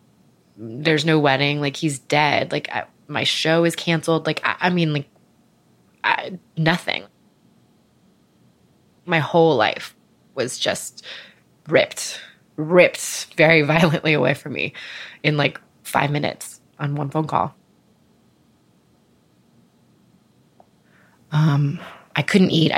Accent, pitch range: American, 150-165 Hz